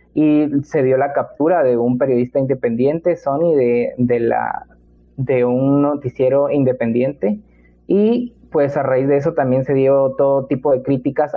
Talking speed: 160 wpm